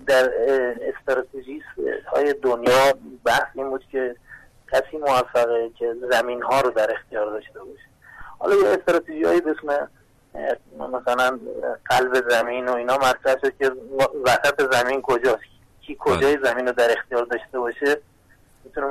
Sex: male